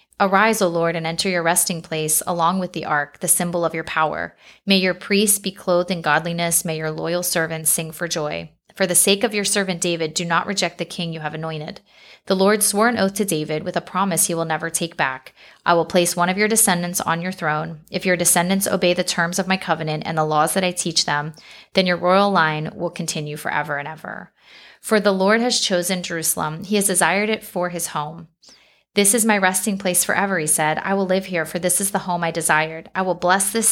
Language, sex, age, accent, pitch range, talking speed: English, female, 20-39, American, 165-195 Hz, 235 wpm